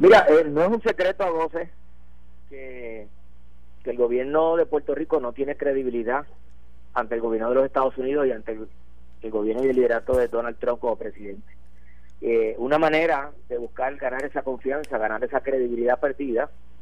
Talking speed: 180 wpm